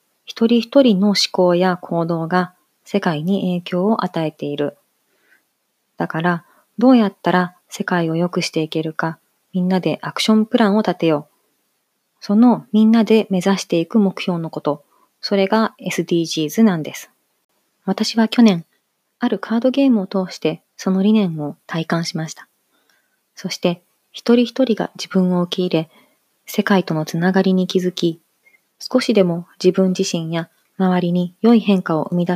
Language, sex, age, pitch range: Japanese, female, 20-39, 170-210 Hz